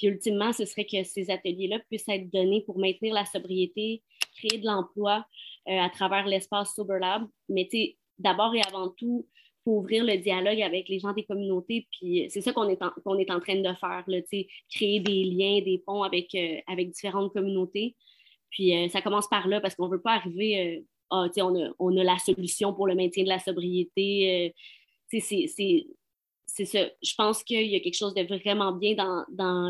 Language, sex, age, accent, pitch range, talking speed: French, female, 20-39, Canadian, 185-215 Hz, 210 wpm